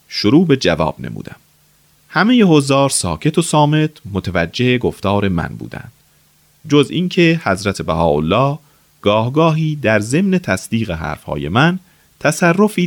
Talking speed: 115 wpm